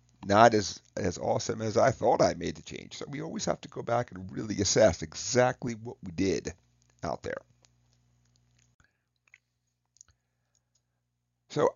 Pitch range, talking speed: 70-115 Hz, 145 wpm